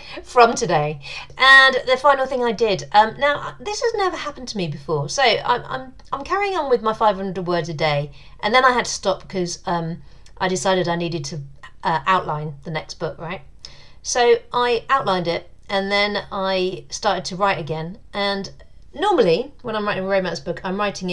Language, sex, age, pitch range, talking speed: English, female, 40-59, 160-225 Hz, 195 wpm